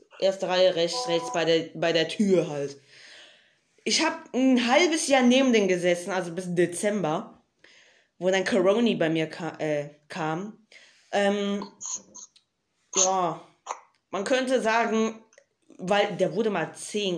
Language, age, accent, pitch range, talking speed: German, 20-39, German, 180-240 Hz, 135 wpm